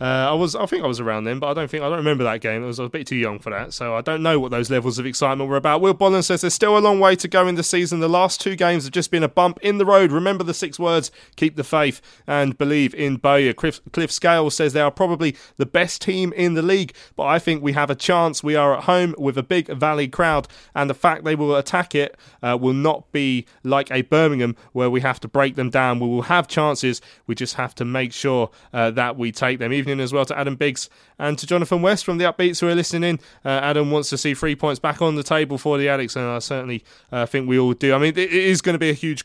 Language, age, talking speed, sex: English, 30-49, 290 wpm, male